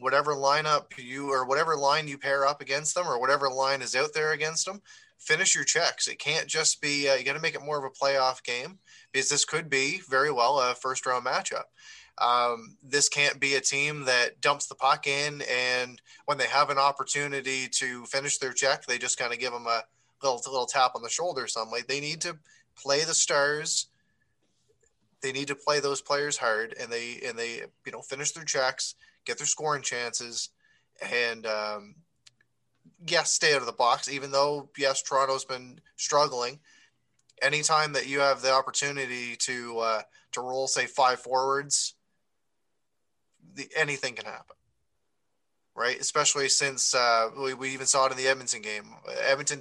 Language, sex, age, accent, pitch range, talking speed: English, male, 20-39, American, 125-145 Hz, 185 wpm